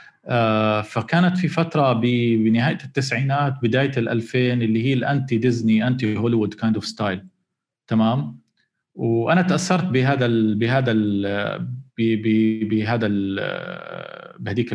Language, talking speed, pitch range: Arabic, 120 wpm, 105-135 Hz